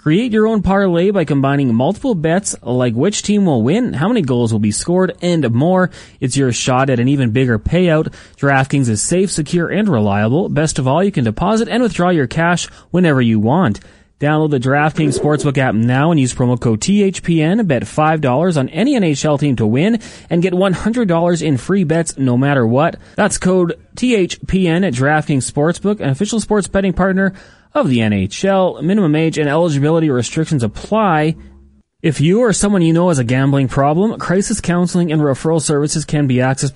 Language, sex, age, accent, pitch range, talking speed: English, male, 30-49, American, 130-175 Hz, 185 wpm